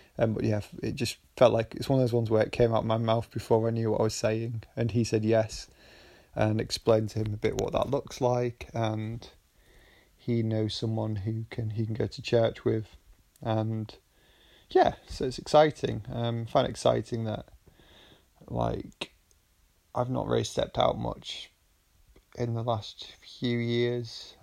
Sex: male